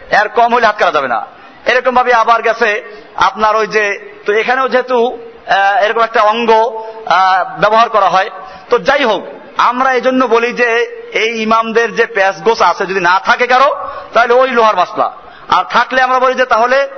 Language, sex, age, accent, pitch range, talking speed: Bengali, male, 50-69, native, 215-255 Hz, 55 wpm